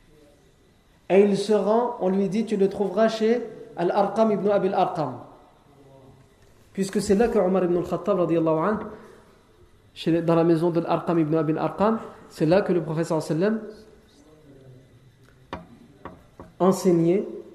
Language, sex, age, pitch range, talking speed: French, male, 40-59, 160-205 Hz, 135 wpm